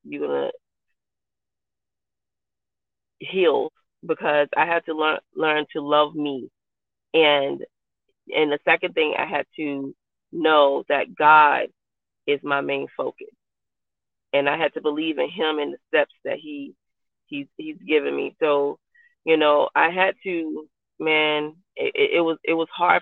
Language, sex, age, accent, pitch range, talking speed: English, female, 30-49, American, 150-185 Hz, 145 wpm